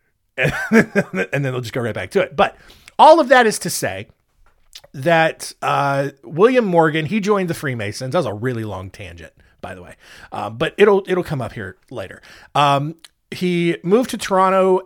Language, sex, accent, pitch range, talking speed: English, male, American, 135-180 Hz, 185 wpm